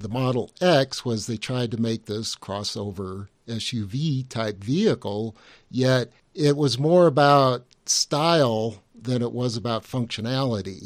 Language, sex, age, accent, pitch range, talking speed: English, male, 50-69, American, 110-135 Hz, 135 wpm